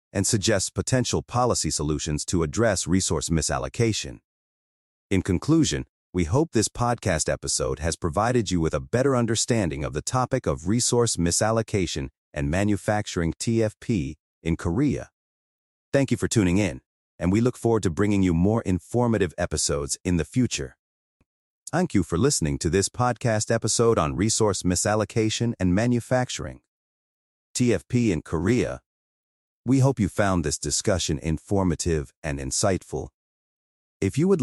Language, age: English, 30-49